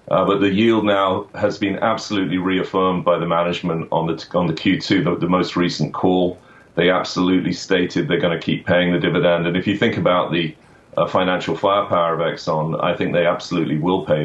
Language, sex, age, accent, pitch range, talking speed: English, male, 30-49, British, 85-95 Hz, 205 wpm